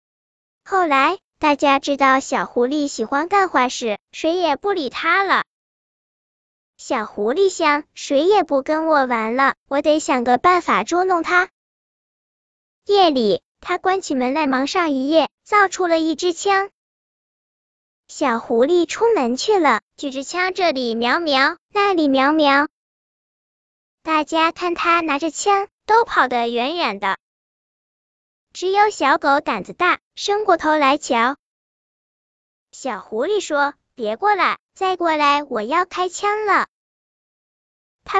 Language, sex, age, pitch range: Chinese, male, 10-29, 270-365 Hz